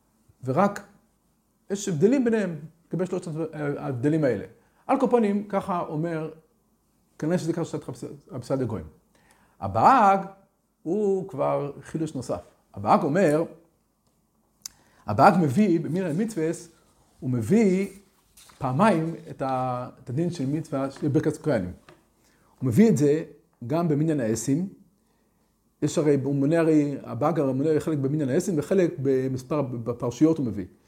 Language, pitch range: Hebrew, 130-175 Hz